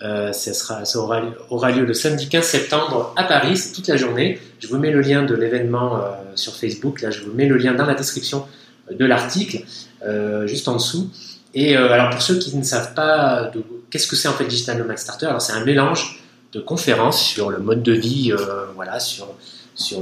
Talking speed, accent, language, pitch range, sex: 230 wpm, French, French, 110-140 Hz, male